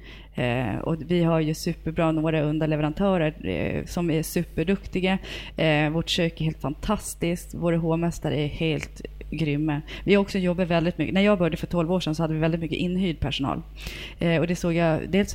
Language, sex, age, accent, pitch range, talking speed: Swedish, female, 30-49, native, 155-175 Hz, 190 wpm